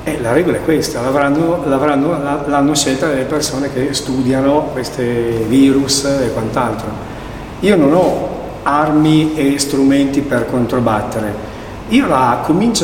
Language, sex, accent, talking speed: Italian, male, native, 120 wpm